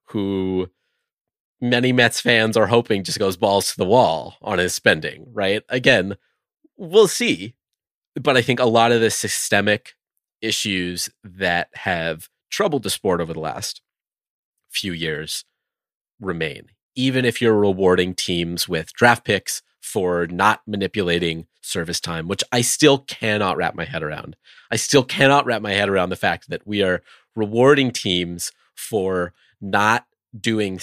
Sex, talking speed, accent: male, 150 wpm, American